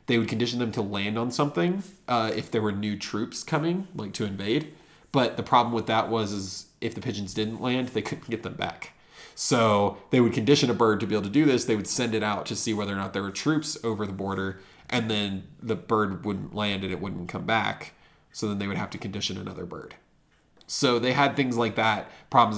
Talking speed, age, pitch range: 240 wpm, 20-39, 105-140 Hz